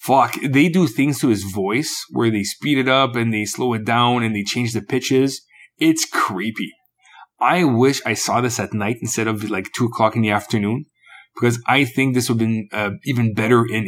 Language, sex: English, male